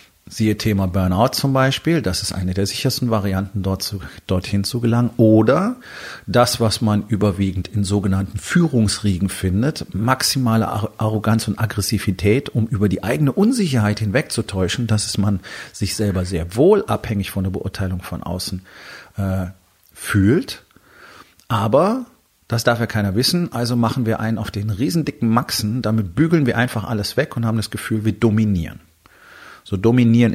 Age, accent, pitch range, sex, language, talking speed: 40-59, German, 100-120 Hz, male, German, 150 wpm